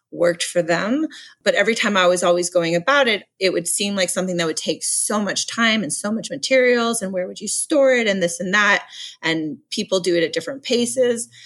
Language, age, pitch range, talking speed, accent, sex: English, 30-49, 175-230 Hz, 230 wpm, American, female